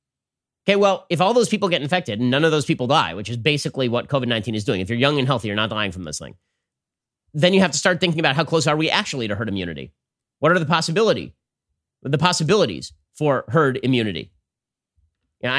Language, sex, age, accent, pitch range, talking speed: English, male, 30-49, American, 115-155 Hz, 220 wpm